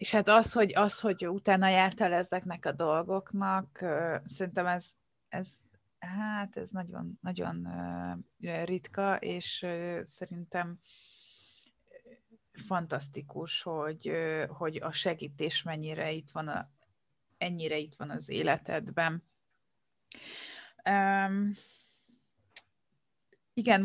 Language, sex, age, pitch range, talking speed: Hungarian, female, 30-49, 165-195 Hz, 90 wpm